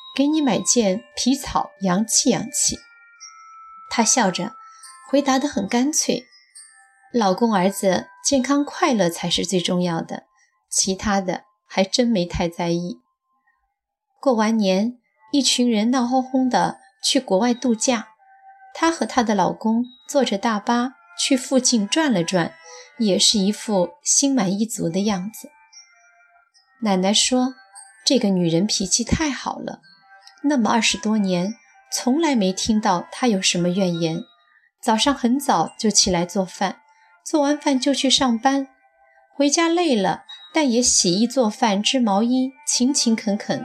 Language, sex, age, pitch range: Chinese, female, 20-39, 195-270 Hz